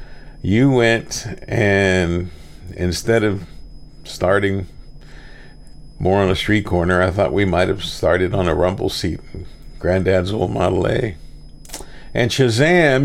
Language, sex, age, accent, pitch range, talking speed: English, male, 50-69, American, 95-120 Hz, 125 wpm